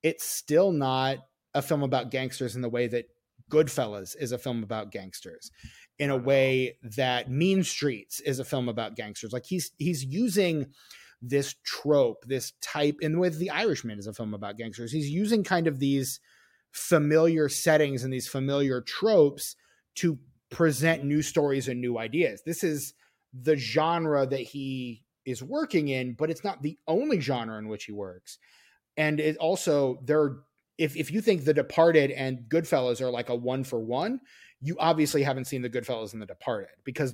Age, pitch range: 30-49, 125-160 Hz